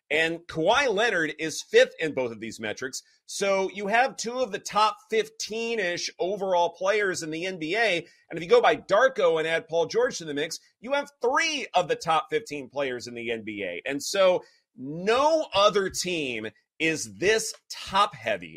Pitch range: 150-225 Hz